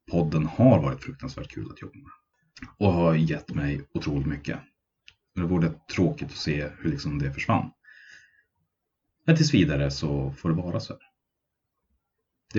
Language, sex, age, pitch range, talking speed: Swedish, male, 30-49, 75-95 Hz, 155 wpm